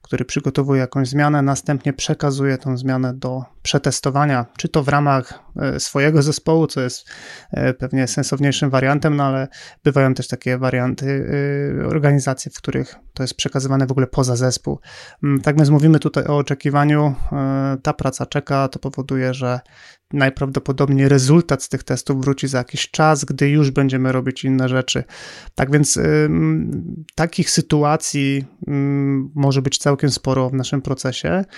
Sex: male